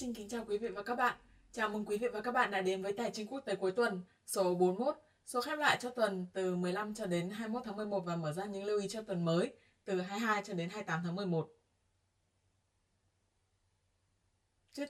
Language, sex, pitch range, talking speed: Vietnamese, female, 175-225 Hz, 220 wpm